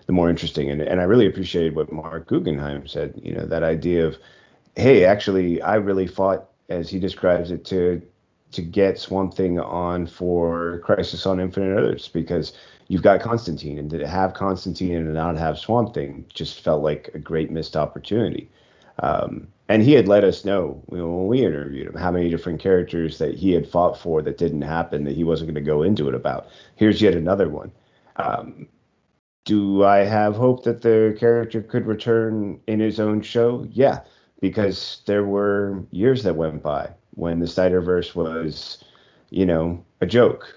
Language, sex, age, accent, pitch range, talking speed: English, male, 30-49, American, 80-95 Hz, 185 wpm